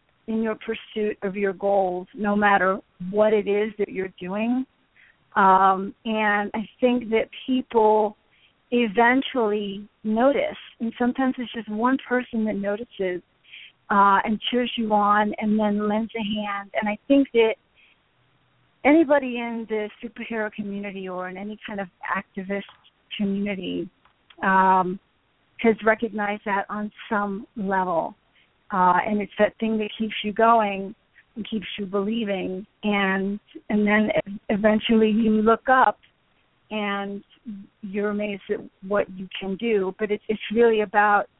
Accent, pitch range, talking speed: American, 200-230 Hz, 140 wpm